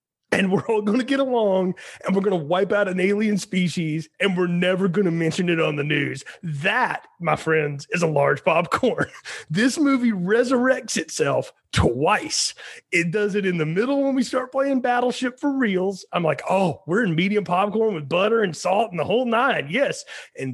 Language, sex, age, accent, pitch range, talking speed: English, male, 30-49, American, 175-230 Hz, 200 wpm